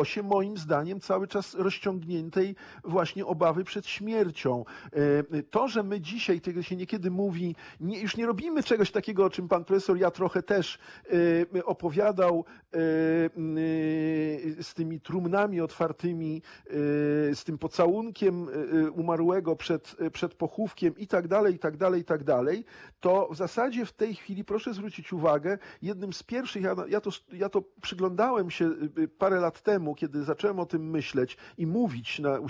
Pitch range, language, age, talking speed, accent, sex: 160-200 Hz, Polish, 50-69, 145 wpm, native, male